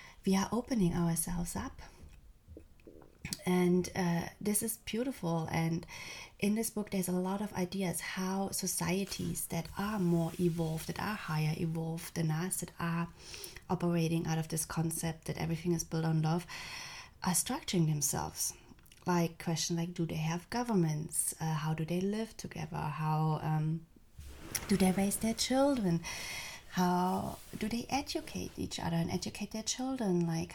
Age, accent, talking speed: 20-39, German, 155 wpm